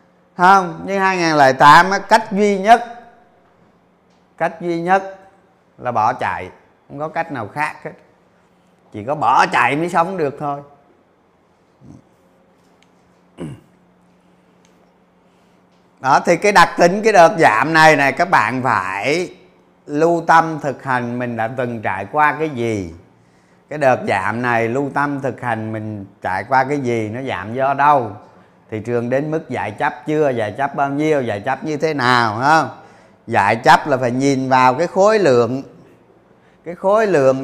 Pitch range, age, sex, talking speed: 120-160 Hz, 30-49, male, 150 wpm